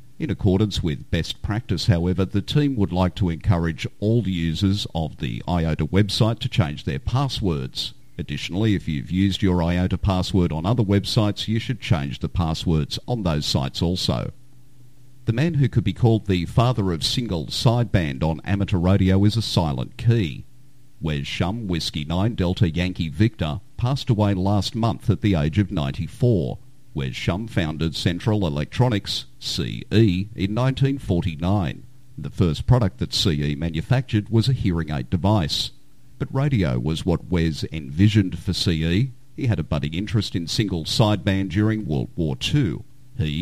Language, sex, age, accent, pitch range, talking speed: English, male, 50-69, Australian, 85-120 Hz, 160 wpm